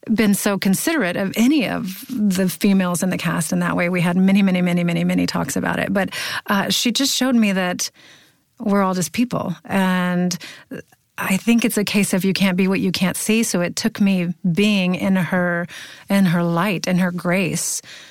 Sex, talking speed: female, 200 wpm